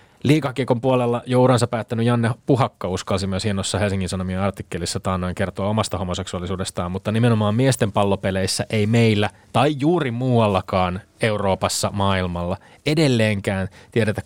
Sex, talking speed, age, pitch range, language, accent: male, 125 wpm, 20-39, 100-130 Hz, Finnish, native